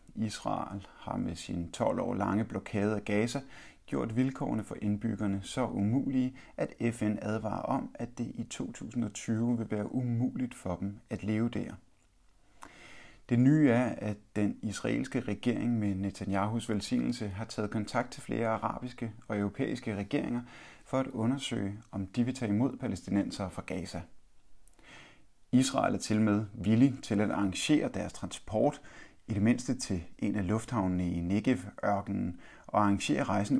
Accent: native